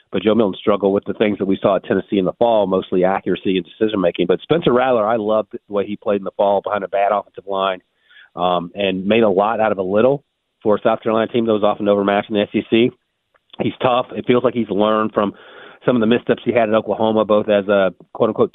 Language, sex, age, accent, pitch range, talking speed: English, male, 40-59, American, 100-115 Hz, 250 wpm